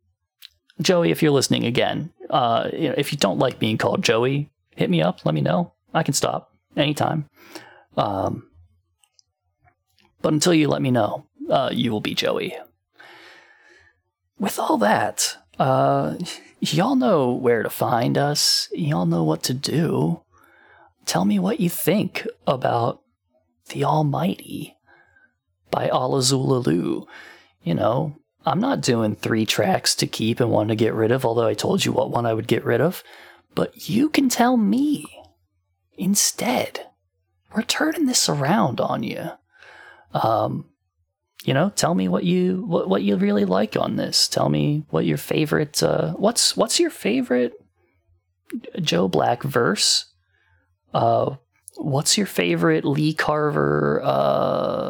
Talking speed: 145 wpm